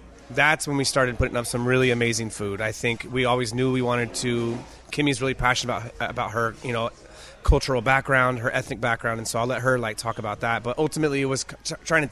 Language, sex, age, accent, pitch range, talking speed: English, male, 30-49, American, 115-130 Hz, 235 wpm